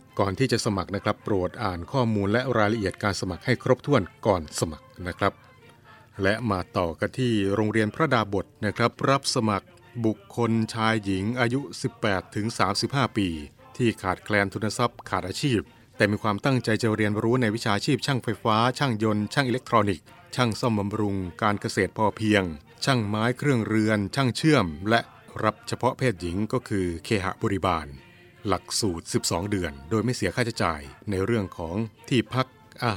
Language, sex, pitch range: Thai, male, 100-120 Hz